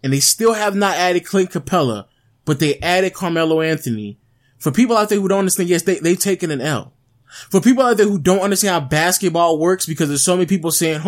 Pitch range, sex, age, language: 160-230 Hz, male, 20-39, English